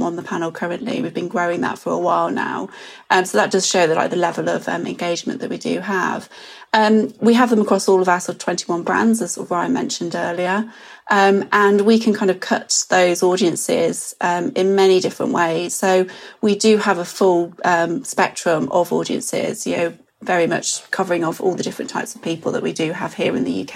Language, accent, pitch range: English, British, 175-215 Hz